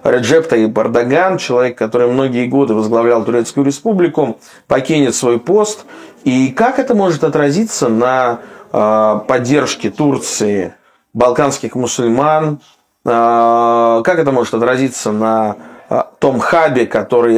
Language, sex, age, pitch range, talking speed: Russian, male, 20-39, 115-160 Hz, 105 wpm